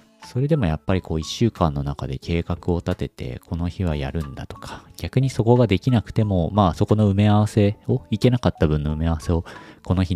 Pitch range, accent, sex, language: 80-115 Hz, native, male, Japanese